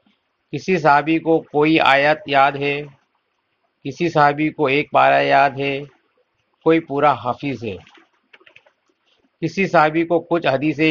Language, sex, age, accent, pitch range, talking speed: English, male, 40-59, Indian, 140-160 Hz, 125 wpm